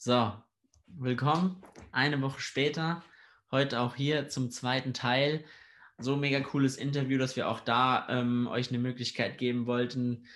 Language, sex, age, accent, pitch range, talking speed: English, male, 20-39, German, 120-130 Hz, 150 wpm